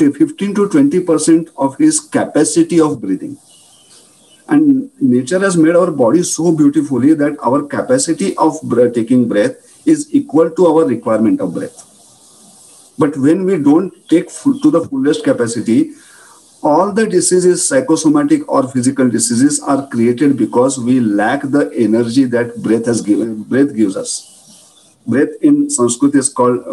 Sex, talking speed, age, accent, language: male, 145 wpm, 50-69, Indian, English